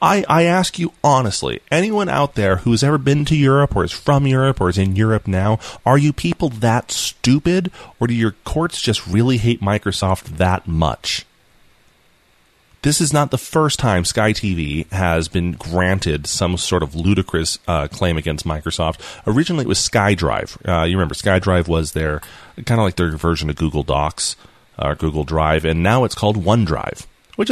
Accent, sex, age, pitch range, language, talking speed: American, male, 30-49, 80-115 Hz, English, 180 wpm